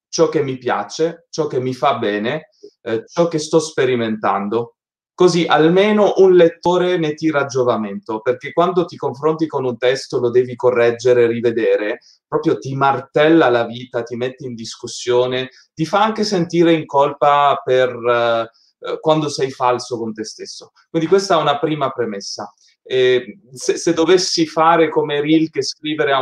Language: Italian